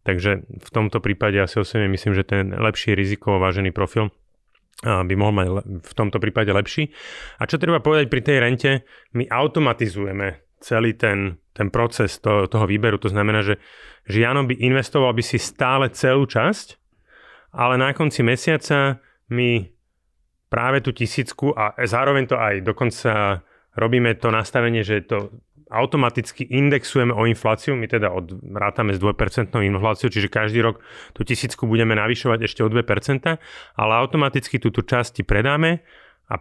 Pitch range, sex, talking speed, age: 100-120 Hz, male, 155 wpm, 30-49